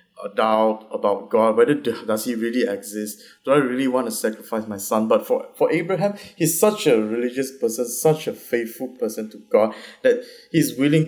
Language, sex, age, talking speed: English, male, 20-39, 185 wpm